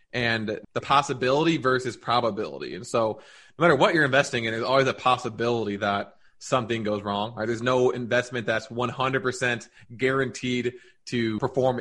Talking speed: 150 wpm